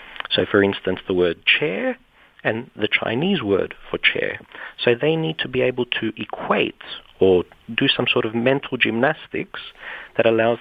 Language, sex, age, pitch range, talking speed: English, male, 40-59, 105-130 Hz, 165 wpm